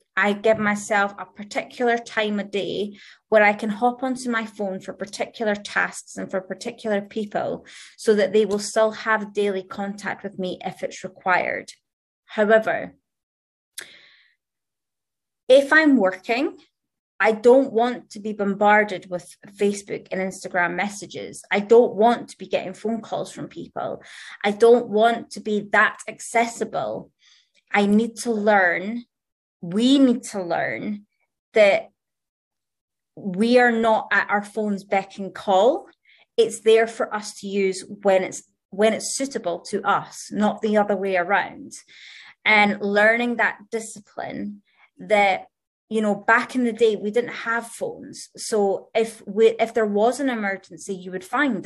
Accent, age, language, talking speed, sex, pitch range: British, 20-39, English, 150 wpm, female, 195-230 Hz